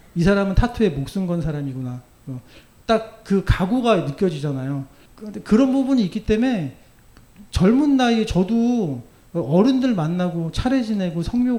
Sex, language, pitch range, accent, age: male, Korean, 140-200 Hz, native, 40-59